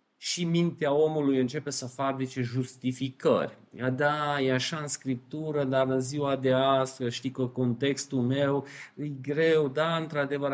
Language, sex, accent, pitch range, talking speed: Romanian, male, native, 130-165 Hz, 140 wpm